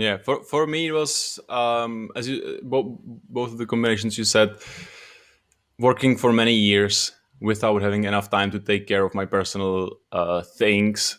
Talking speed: 165 wpm